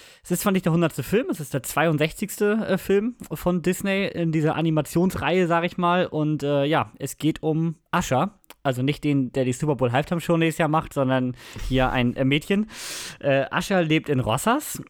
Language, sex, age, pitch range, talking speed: German, male, 20-39, 135-175 Hz, 195 wpm